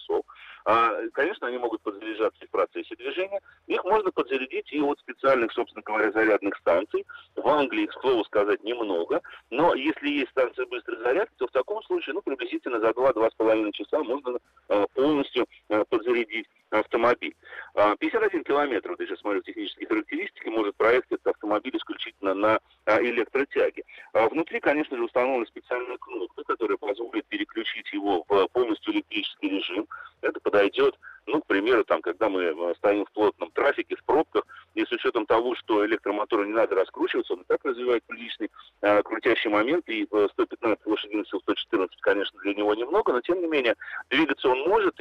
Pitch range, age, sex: 325-420 Hz, 40-59, male